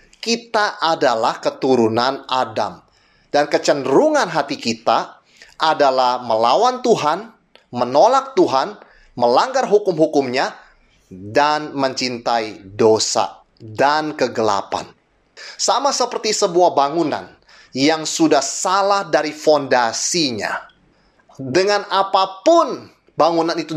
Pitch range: 125-165 Hz